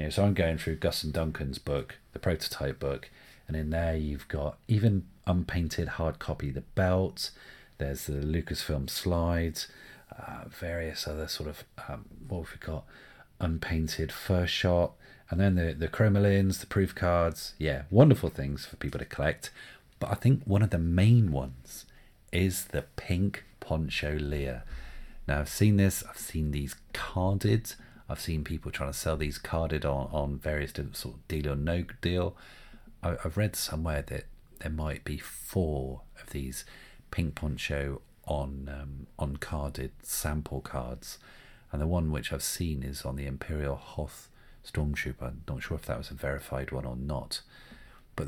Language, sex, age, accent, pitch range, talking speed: English, male, 40-59, British, 70-90 Hz, 170 wpm